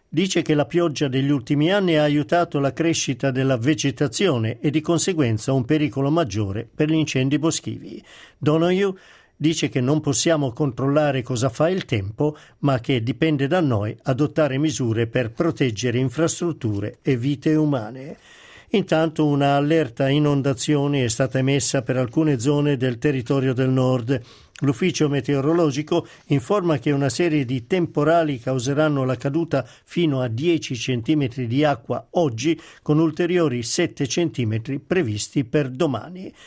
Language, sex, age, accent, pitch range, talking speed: Italian, male, 50-69, native, 135-160 Hz, 140 wpm